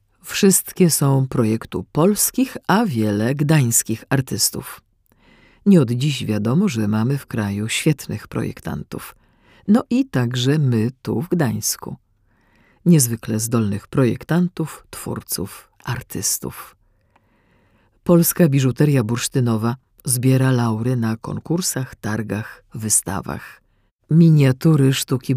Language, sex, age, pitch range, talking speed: Polish, female, 50-69, 115-150 Hz, 95 wpm